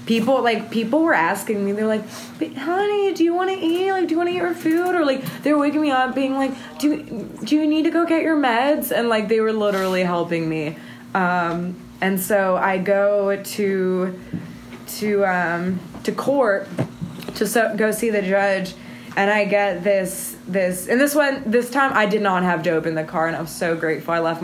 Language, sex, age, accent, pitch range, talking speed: English, female, 20-39, American, 185-220 Hz, 210 wpm